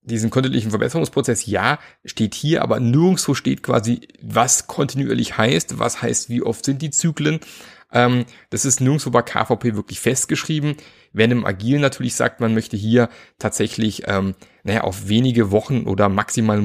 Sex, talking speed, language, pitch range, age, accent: male, 155 wpm, German, 100-125 Hz, 30-49, German